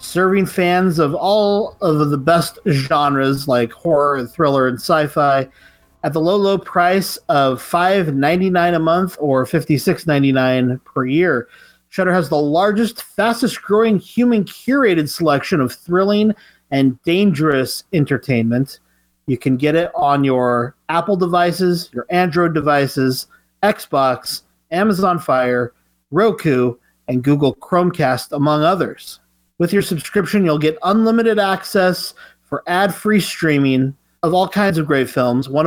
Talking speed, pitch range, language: 135 wpm, 135-185 Hz, English